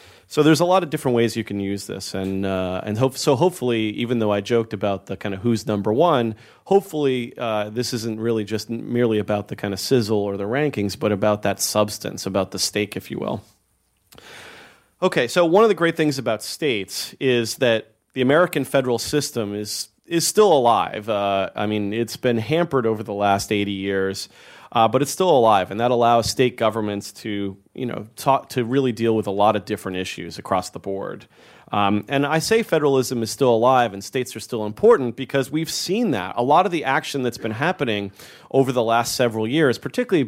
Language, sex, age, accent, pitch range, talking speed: English, male, 30-49, American, 100-130 Hz, 210 wpm